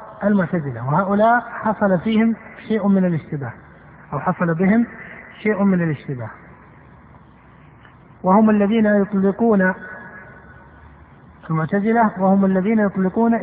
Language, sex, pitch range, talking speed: Arabic, male, 165-210 Hz, 90 wpm